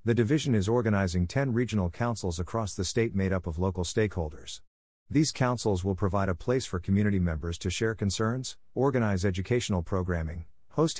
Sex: male